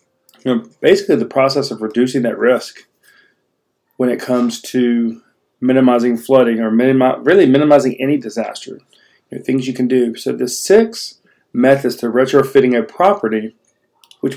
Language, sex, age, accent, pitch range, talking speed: English, male, 40-59, American, 120-140 Hz, 130 wpm